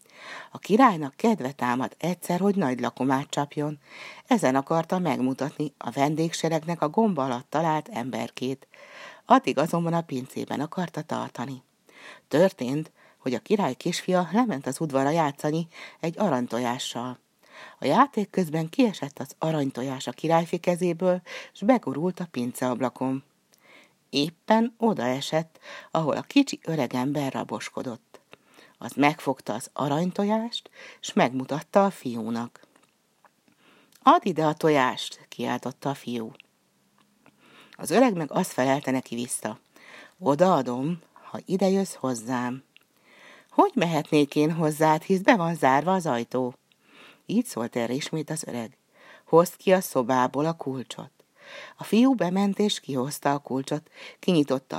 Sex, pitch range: female, 130-180 Hz